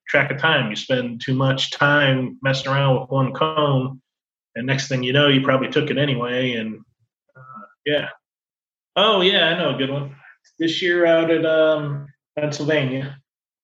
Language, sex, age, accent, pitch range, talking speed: English, male, 30-49, American, 130-160 Hz, 170 wpm